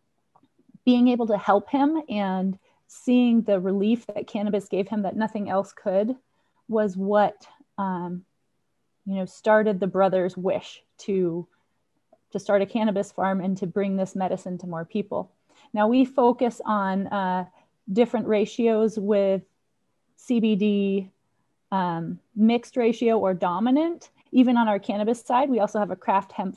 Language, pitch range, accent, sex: English, 190-235 Hz, American, female